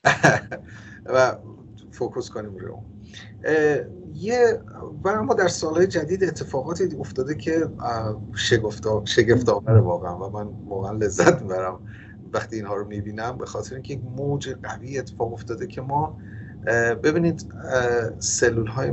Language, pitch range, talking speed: Persian, 105-130 Hz, 115 wpm